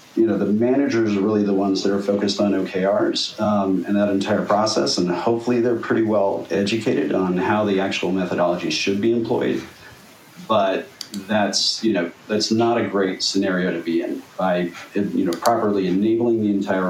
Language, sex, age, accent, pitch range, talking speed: English, male, 40-59, American, 95-110 Hz, 180 wpm